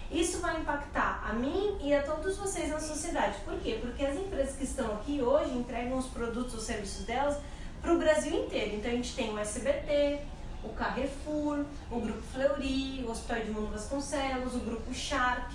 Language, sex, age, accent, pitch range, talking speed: Portuguese, female, 20-39, Brazilian, 235-295 Hz, 190 wpm